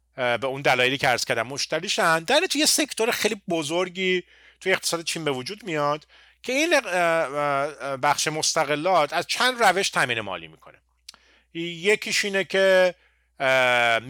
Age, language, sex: 30-49, Persian, male